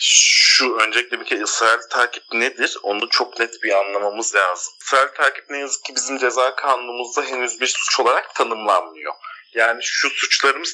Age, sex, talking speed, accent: 40-59, male, 155 wpm, native